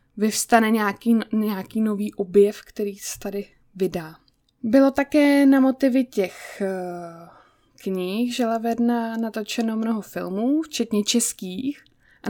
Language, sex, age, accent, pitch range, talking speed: Czech, female, 20-39, native, 200-235 Hz, 110 wpm